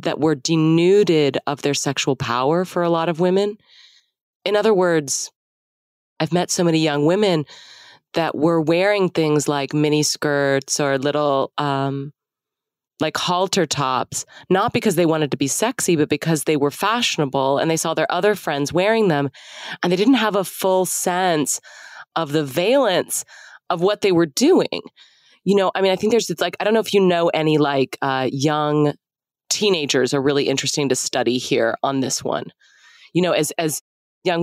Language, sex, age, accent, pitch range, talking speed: English, female, 20-39, American, 145-190 Hz, 180 wpm